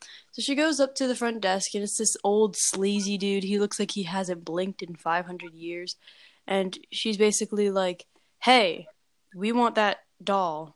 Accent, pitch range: American, 185-220 Hz